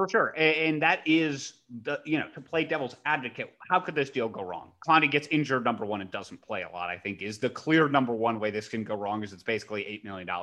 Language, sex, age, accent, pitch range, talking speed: English, male, 30-49, American, 120-155 Hz, 260 wpm